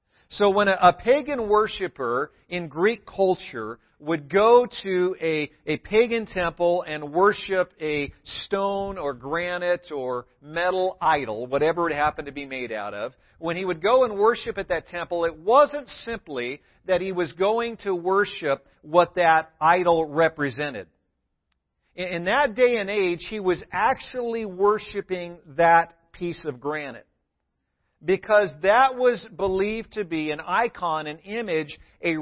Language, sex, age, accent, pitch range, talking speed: English, male, 50-69, American, 150-205 Hz, 150 wpm